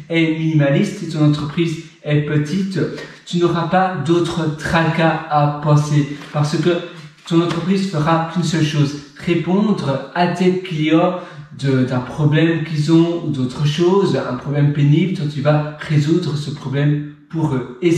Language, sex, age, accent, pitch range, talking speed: French, male, 40-59, French, 145-175 Hz, 145 wpm